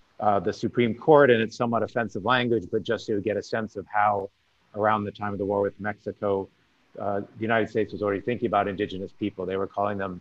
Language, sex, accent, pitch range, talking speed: English, male, American, 100-115 Hz, 235 wpm